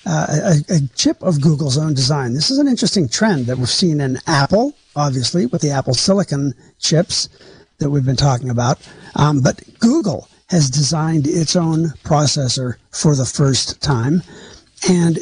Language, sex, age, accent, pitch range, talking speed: English, male, 60-79, American, 135-170 Hz, 165 wpm